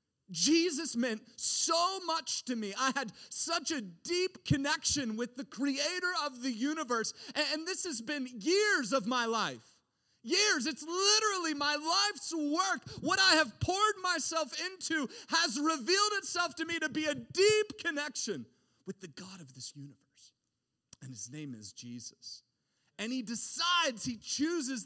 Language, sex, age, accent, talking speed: English, male, 40-59, American, 155 wpm